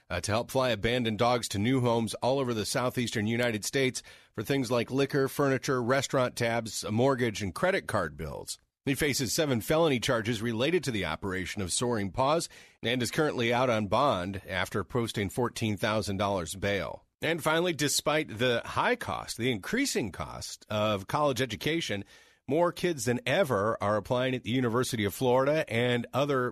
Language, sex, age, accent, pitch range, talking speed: English, male, 40-59, American, 110-140 Hz, 165 wpm